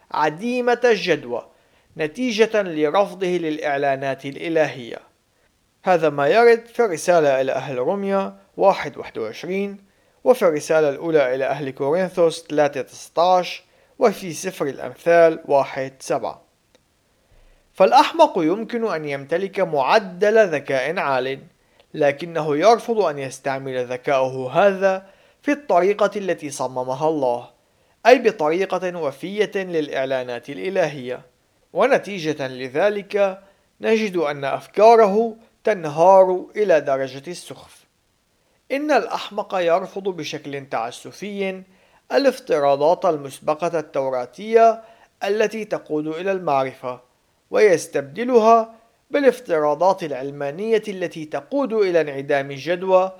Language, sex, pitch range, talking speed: Arabic, male, 145-205 Hz, 90 wpm